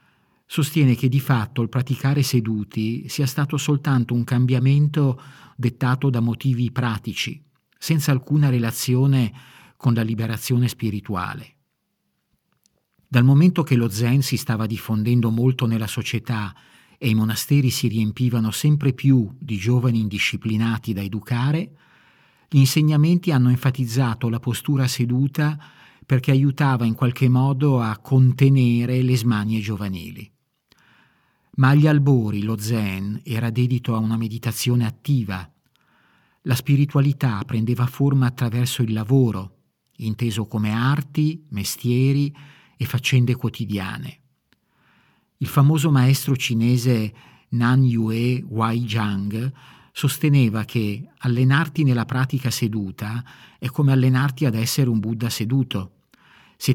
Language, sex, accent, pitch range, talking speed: Italian, male, native, 115-140 Hz, 115 wpm